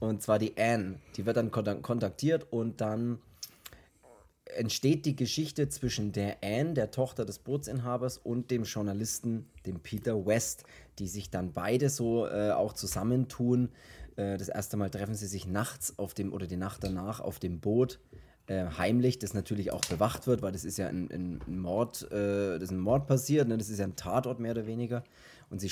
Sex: male